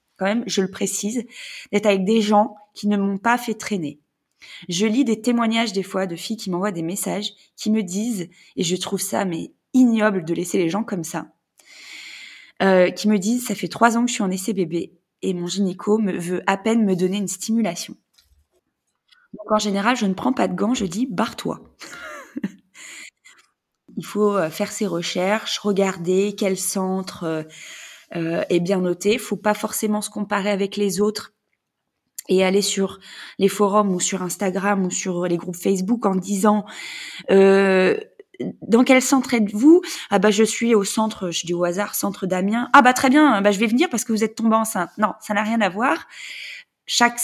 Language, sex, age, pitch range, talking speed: French, female, 20-39, 190-230 Hz, 195 wpm